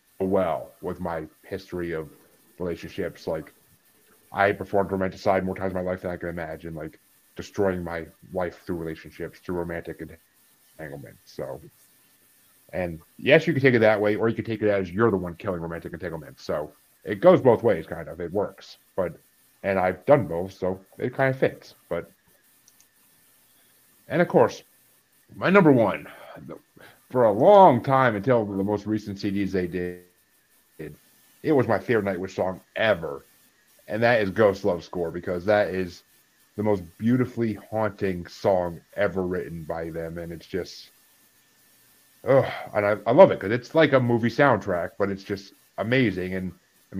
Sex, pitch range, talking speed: male, 90-110 Hz, 170 wpm